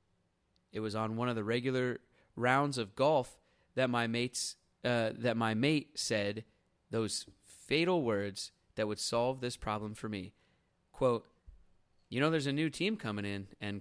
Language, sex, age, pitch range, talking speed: English, male, 30-49, 110-170 Hz, 165 wpm